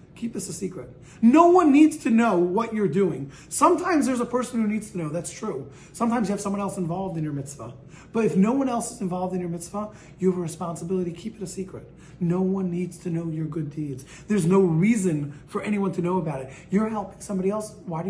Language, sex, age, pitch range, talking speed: English, male, 40-59, 160-215 Hz, 240 wpm